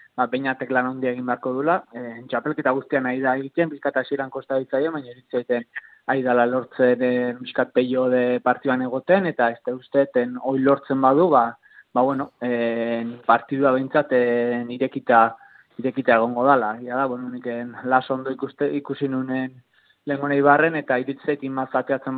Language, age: Polish, 20-39